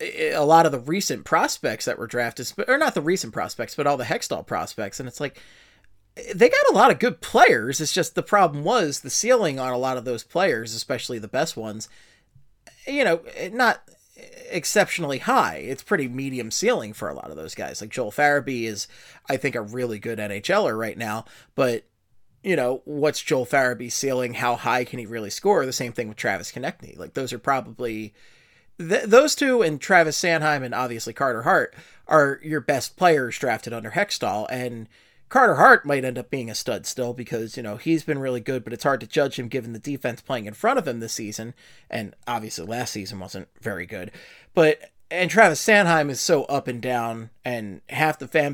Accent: American